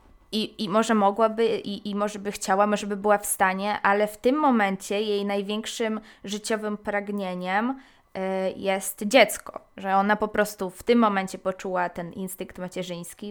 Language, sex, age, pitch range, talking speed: Polish, female, 20-39, 190-215 Hz, 160 wpm